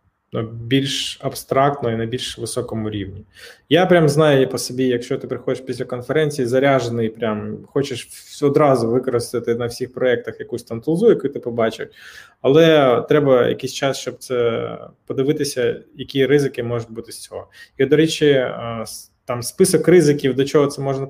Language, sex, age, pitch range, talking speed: Ukrainian, male, 20-39, 120-155 Hz, 155 wpm